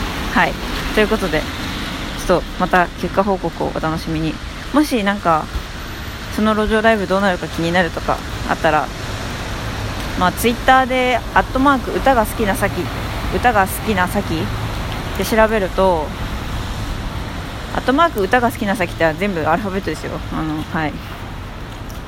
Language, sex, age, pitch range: Japanese, female, 20-39, 145-220 Hz